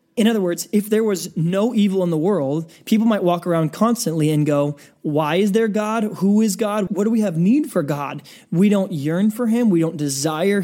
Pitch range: 160-205 Hz